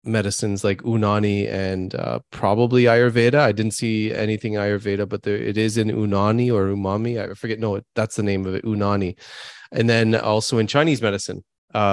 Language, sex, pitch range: English, male, 110-135 Hz